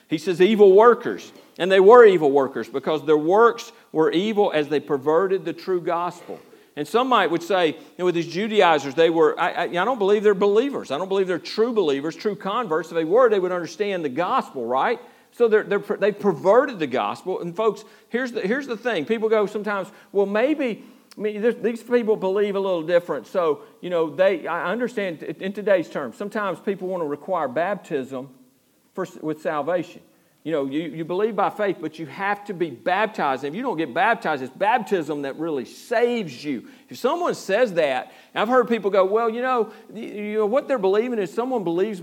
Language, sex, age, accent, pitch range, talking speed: English, male, 50-69, American, 170-235 Hz, 210 wpm